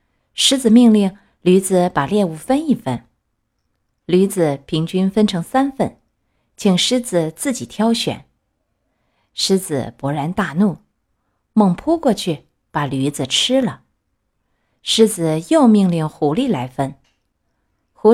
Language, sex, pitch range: Chinese, female, 150-220 Hz